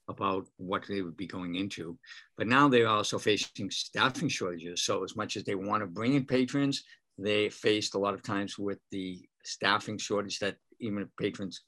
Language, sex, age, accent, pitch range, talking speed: English, male, 50-69, American, 95-110 Hz, 195 wpm